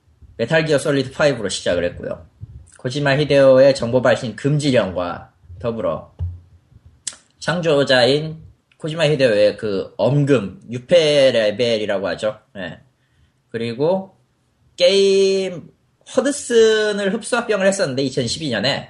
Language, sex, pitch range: Korean, male, 115-170 Hz